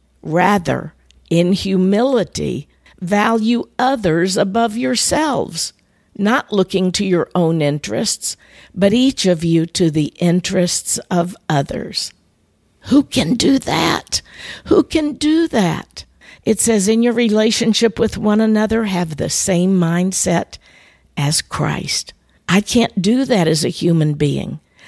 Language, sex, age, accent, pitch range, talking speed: English, female, 50-69, American, 155-205 Hz, 125 wpm